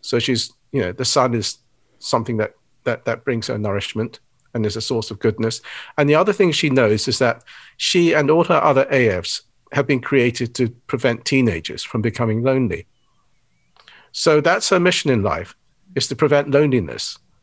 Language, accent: English, British